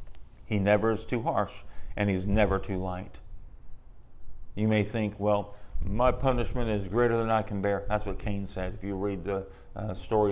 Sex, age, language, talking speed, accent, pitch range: male, 40-59, English, 185 wpm, American, 95-110 Hz